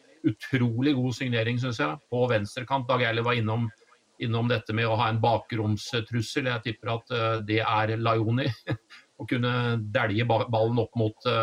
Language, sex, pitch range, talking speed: English, male, 110-135 Hz, 160 wpm